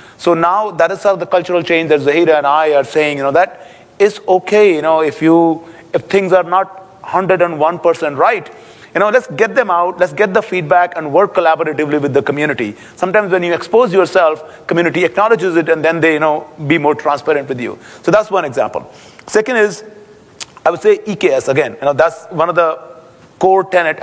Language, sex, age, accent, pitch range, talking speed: English, male, 30-49, Indian, 155-190 Hz, 205 wpm